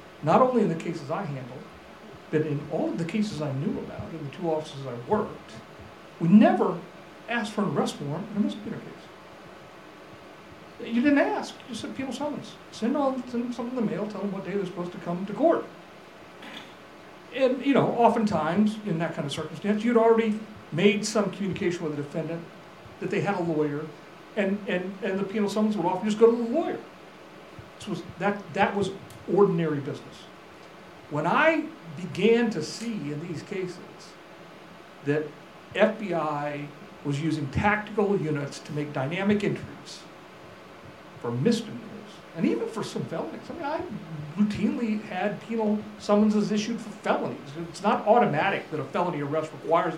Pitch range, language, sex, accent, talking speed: 165-215 Hz, English, male, American, 170 wpm